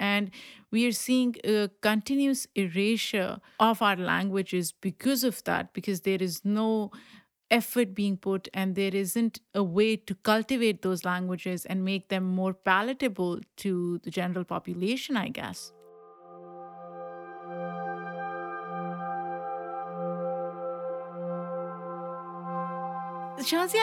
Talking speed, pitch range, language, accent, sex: 105 wpm, 180-215 Hz, English, Indian, female